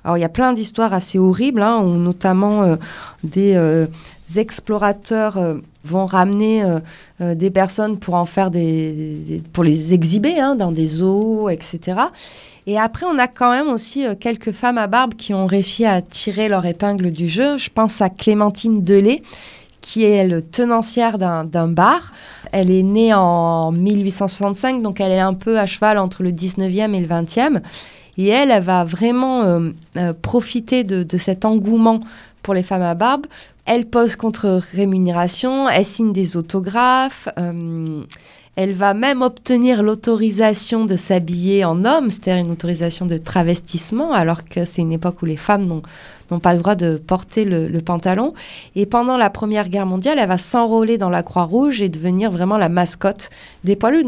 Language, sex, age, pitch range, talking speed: French, female, 20-39, 175-225 Hz, 180 wpm